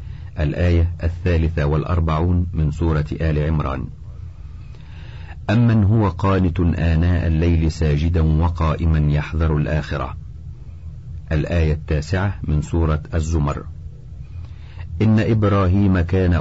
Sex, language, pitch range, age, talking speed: male, Arabic, 80-90 Hz, 50-69, 90 wpm